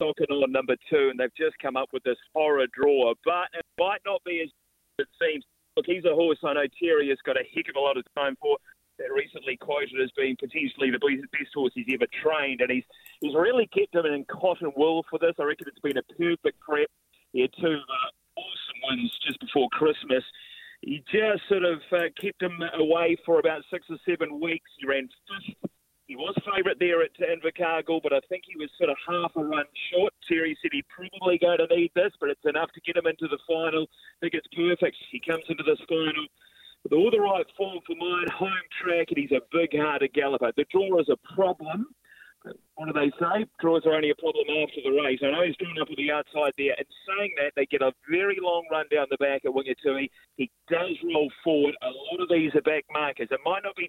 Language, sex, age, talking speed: English, male, 30-49, 230 wpm